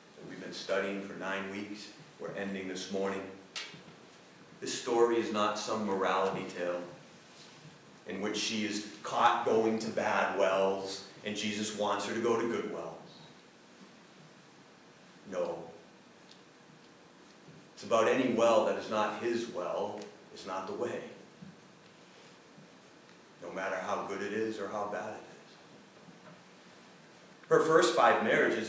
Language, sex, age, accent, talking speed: English, male, 40-59, American, 130 wpm